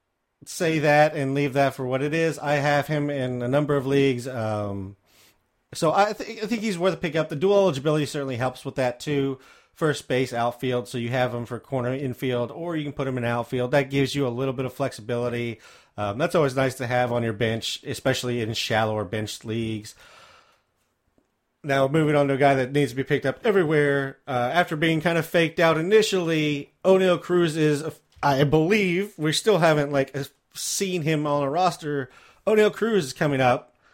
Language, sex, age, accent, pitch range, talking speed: English, male, 30-49, American, 125-160 Hz, 205 wpm